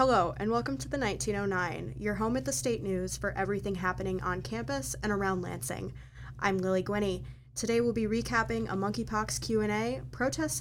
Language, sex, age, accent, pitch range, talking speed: English, female, 20-39, American, 140-205 Hz, 175 wpm